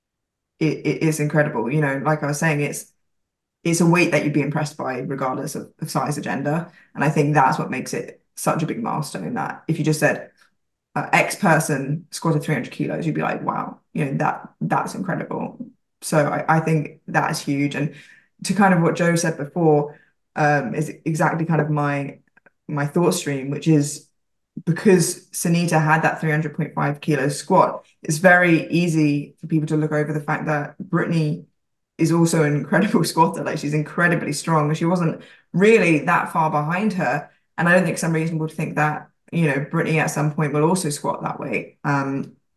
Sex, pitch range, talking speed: female, 150-165 Hz, 195 wpm